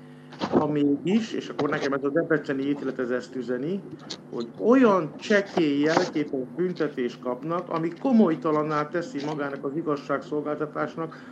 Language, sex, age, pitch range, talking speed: Hungarian, male, 50-69, 150-190 Hz, 125 wpm